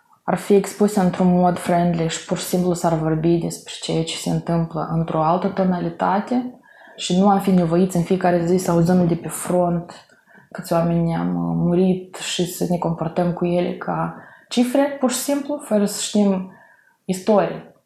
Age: 20-39